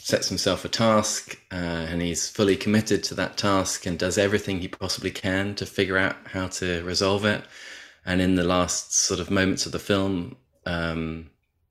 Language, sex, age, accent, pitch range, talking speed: English, male, 20-39, British, 80-100 Hz, 185 wpm